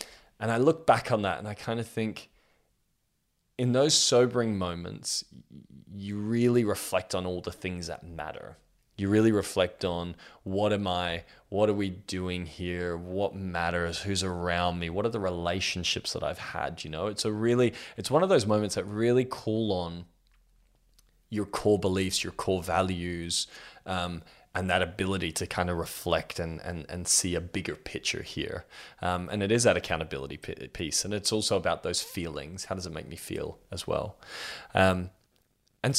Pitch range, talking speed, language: 90-105 Hz, 175 wpm, English